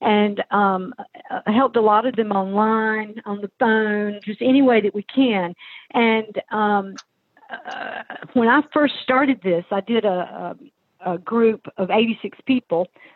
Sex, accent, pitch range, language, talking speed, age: female, American, 190-245 Hz, English, 155 wpm, 50-69